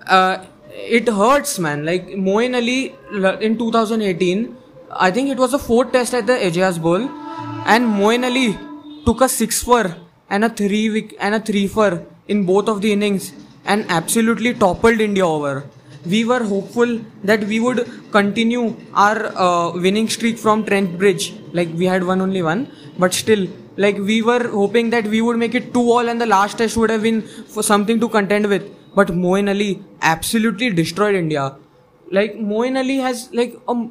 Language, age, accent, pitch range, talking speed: English, 20-39, Indian, 185-230 Hz, 180 wpm